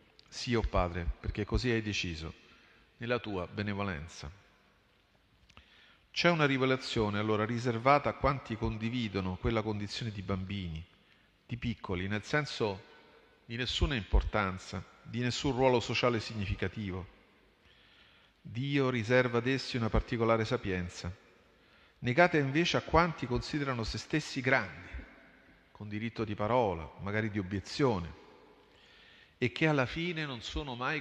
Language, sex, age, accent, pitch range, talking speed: Italian, male, 40-59, native, 100-130 Hz, 125 wpm